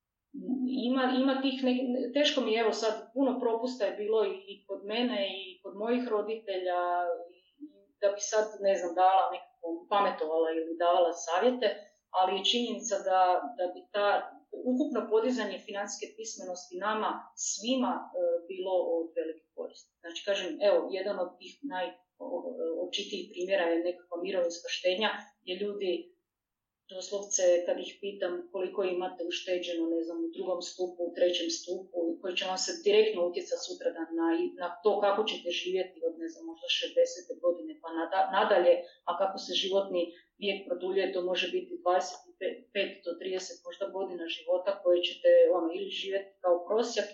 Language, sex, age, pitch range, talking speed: Croatian, female, 30-49, 180-245 Hz, 155 wpm